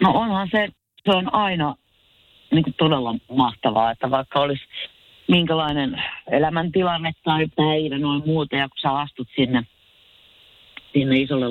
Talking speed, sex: 130 wpm, female